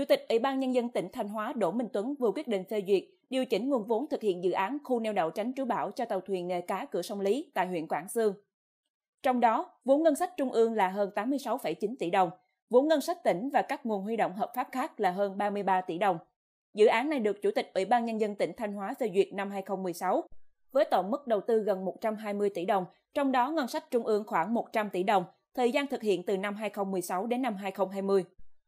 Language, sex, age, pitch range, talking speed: Vietnamese, female, 20-39, 195-255 Hz, 245 wpm